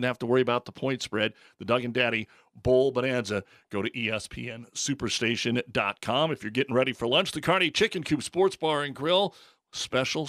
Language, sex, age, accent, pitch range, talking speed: English, male, 40-59, American, 115-135 Hz, 185 wpm